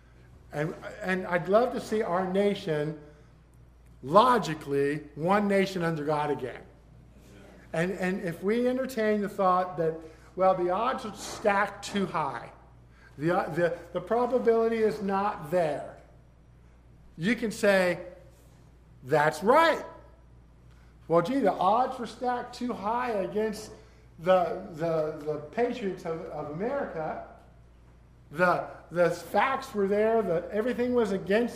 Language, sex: English, male